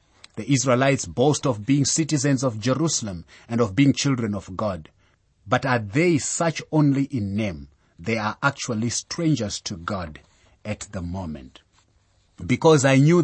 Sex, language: male, English